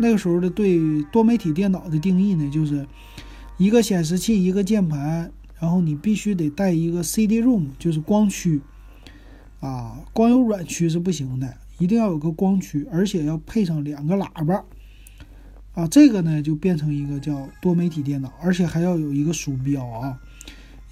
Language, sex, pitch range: Chinese, male, 145-205 Hz